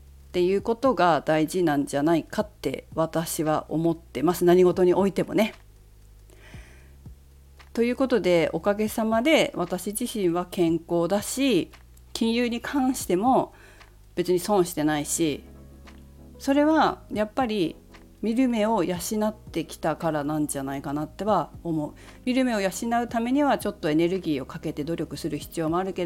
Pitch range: 145-220 Hz